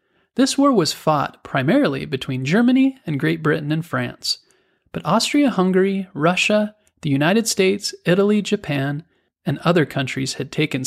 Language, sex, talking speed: English, male, 140 wpm